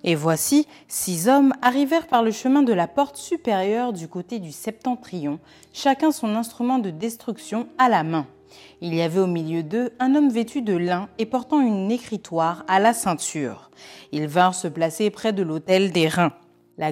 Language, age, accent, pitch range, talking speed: French, 30-49, French, 170-245 Hz, 185 wpm